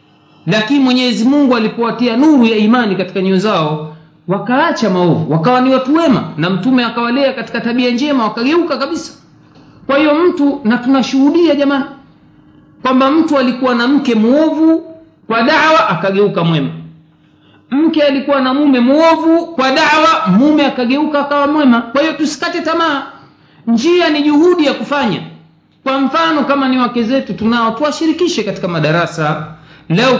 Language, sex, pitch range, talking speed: Swahili, male, 185-275 Hz, 140 wpm